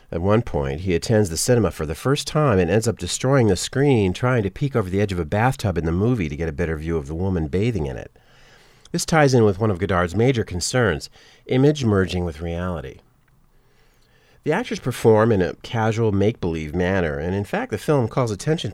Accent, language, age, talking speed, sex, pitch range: American, English, 40-59, 220 wpm, male, 85-125 Hz